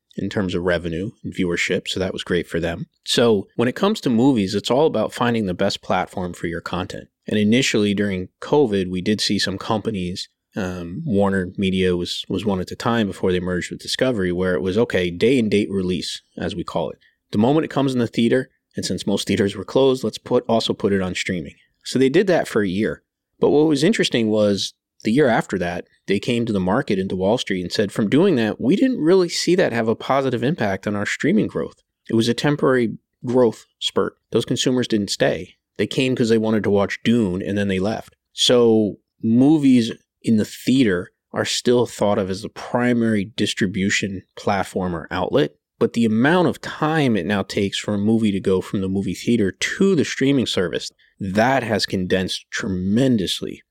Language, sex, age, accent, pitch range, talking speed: English, male, 30-49, American, 95-120 Hz, 210 wpm